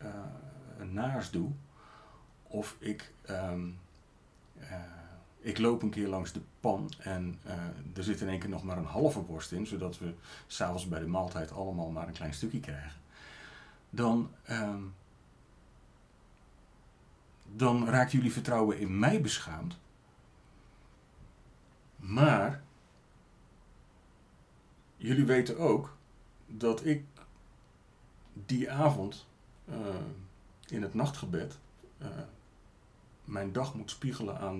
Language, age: Dutch, 40-59